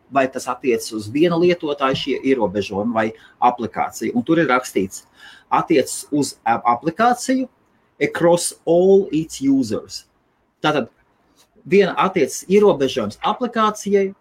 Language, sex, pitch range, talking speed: English, male, 120-180 Hz, 110 wpm